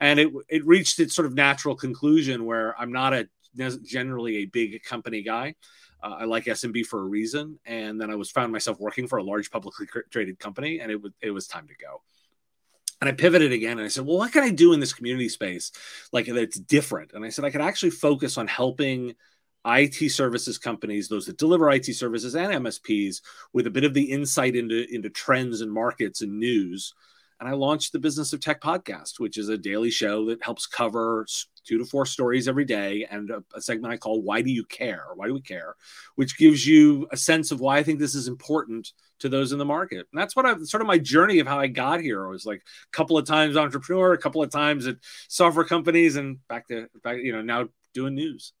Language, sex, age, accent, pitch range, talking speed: English, male, 30-49, American, 115-150 Hz, 230 wpm